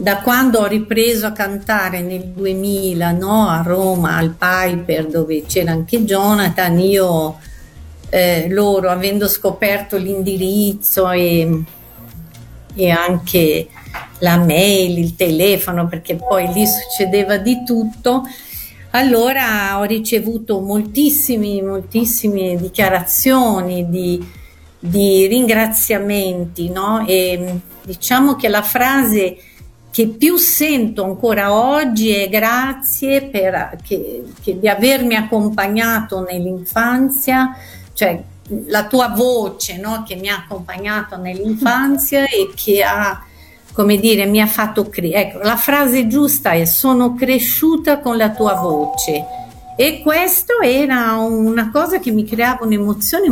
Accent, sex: native, female